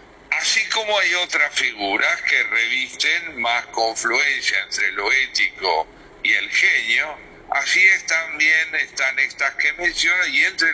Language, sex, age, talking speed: Spanish, male, 60-79, 135 wpm